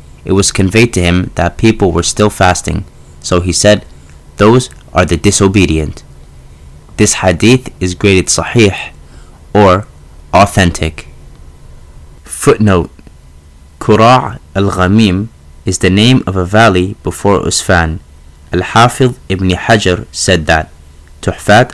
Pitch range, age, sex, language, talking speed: 75-100 Hz, 30-49, male, English, 115 wpm